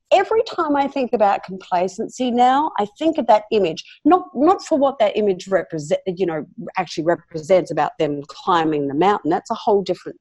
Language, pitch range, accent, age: English, 180-250 Hz, Australian, 50-69